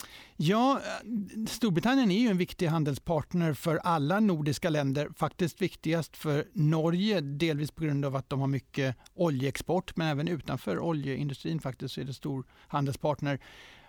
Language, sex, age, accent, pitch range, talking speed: Swedish, male, 60-79, native, 140-175 Hz, 145 wpm